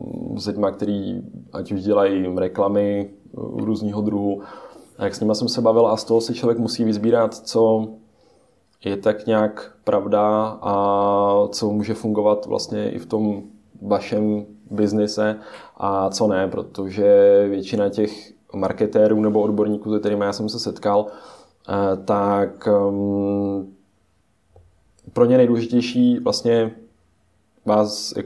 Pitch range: 100-110 Hz